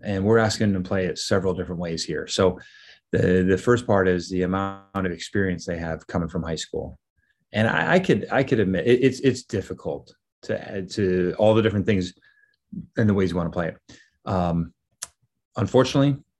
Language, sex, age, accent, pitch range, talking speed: English, male, 30-49, American, 90-110 Hz, 200 wpm